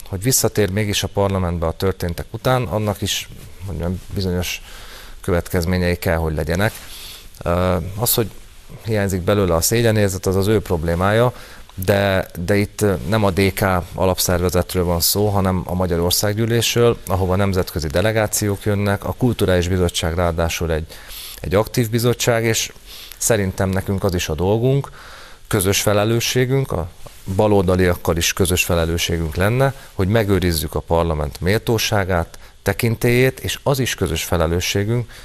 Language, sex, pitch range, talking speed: Hungarian, male, 85-105 Hz, 130 wpm